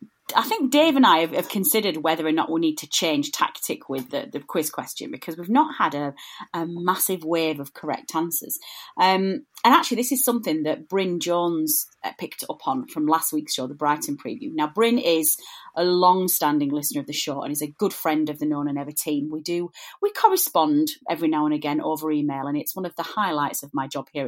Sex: female